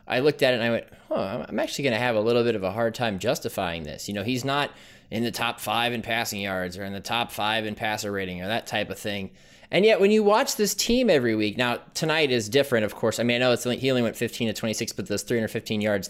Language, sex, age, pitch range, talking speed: English, male, 20-39, 110-150 Hz, 280 wpm